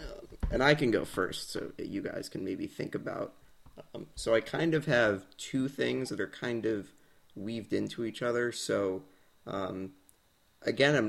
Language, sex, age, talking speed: English, male, 30-49, 180 wpm